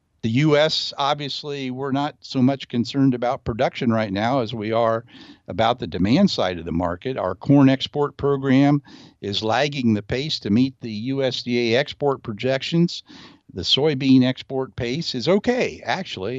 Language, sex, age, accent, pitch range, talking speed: English, male, 60-79, American, 115-140 Hz, 160 wpm